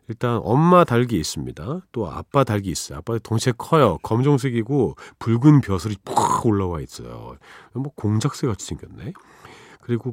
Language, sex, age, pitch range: Korean, male, 40-59, 90-140 Hz